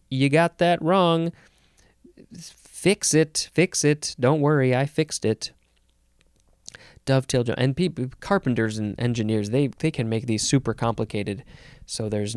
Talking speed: 135 wpm